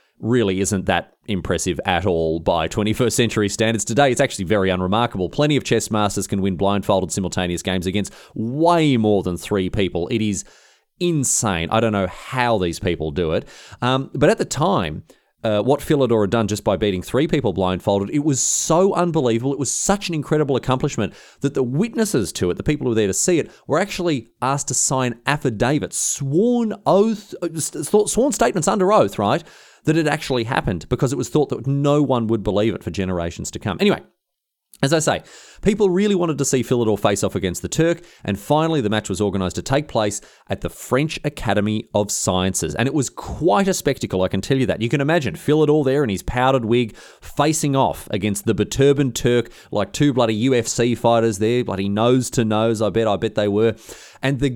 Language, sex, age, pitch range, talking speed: English, male, 30-49, 105-145 Hz, 200 wpm